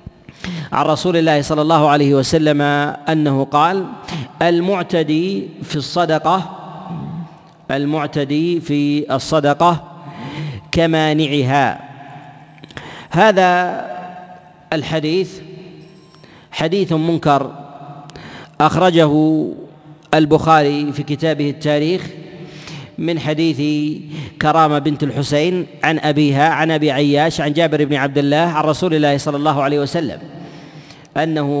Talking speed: 90 wpm